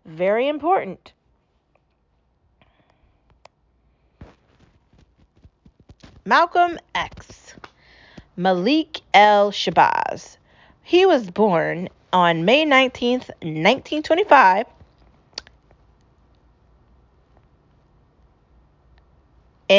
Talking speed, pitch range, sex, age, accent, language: 40 wpm, 190-265 Hz, female, 40-59, American, English